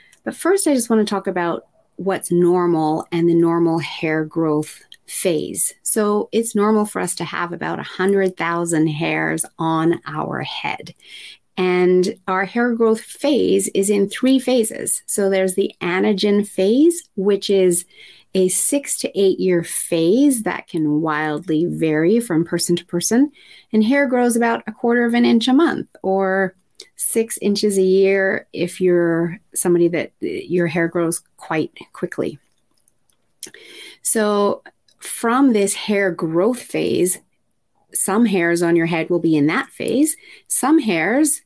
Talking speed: 150 wpm